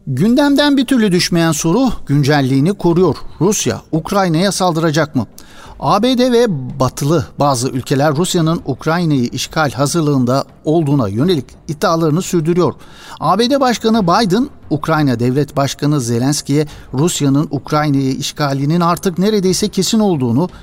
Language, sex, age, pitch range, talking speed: Turkish, male, 60-79, 135-170 Hz, 110 wpm